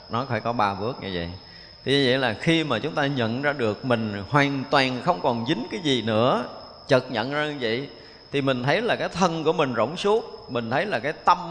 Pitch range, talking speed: 120-155 Hz, 240 wpm